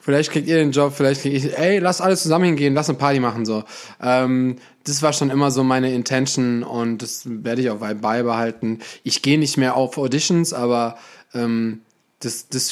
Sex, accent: male, German